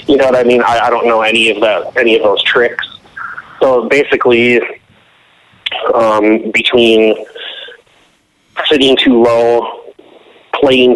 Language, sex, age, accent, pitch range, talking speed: English, male, 30-49, American, 105-125 Hz, 130 wpm